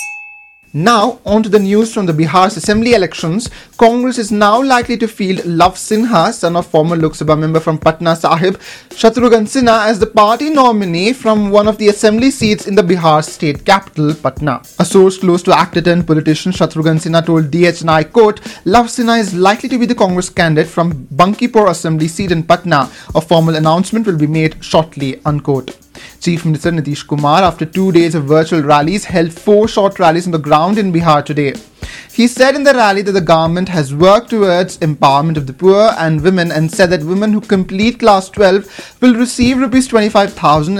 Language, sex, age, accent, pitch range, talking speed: English, male, 30-49, Indian, 160-210 Hz, 190 wpm